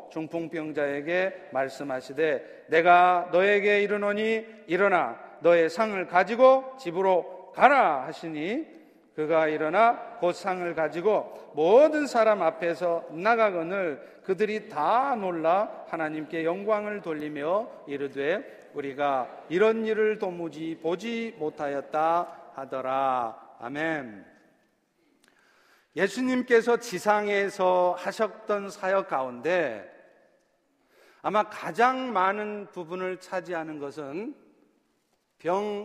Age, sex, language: 40-59, male, Korean